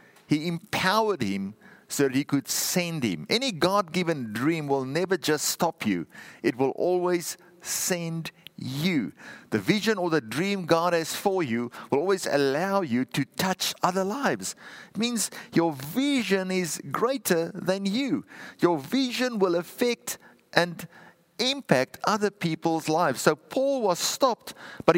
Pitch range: 140-200 Hz